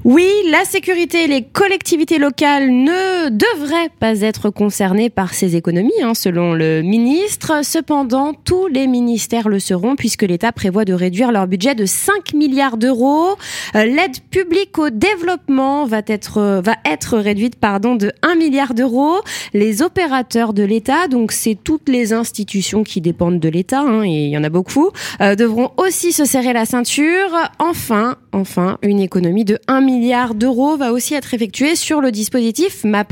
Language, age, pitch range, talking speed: French, 20-39, 205-280 Hz, 170 wpm